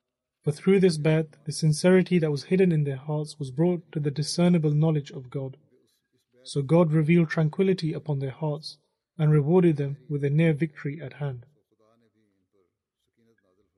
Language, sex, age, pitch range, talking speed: English, male, 30-49, 135-170 Hz, 155 wpm